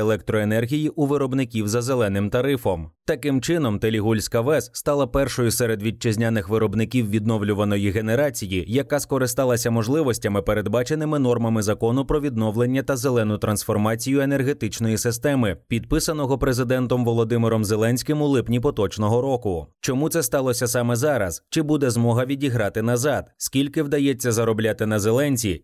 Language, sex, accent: Ukrainian, male, native